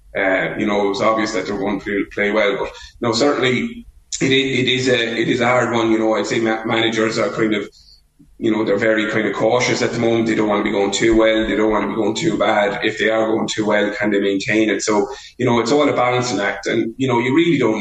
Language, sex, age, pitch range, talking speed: English, male, 20-39, 105-120 Hz, 280 wpm